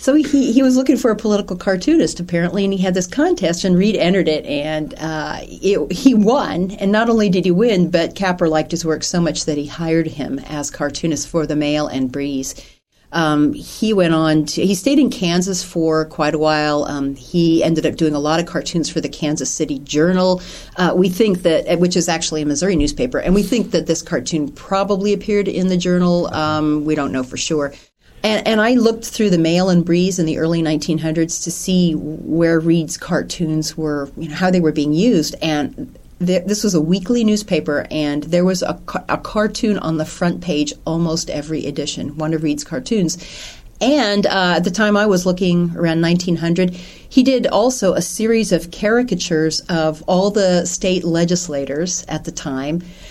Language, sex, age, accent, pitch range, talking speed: English, female, 40-59, American, 155-190 Hz, 195 wpm